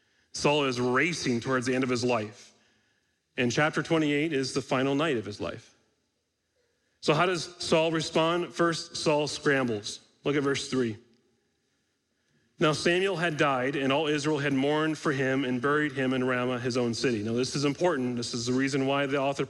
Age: 40-59